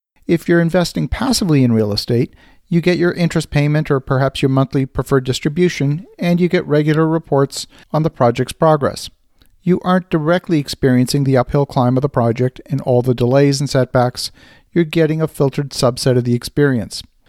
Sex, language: male, English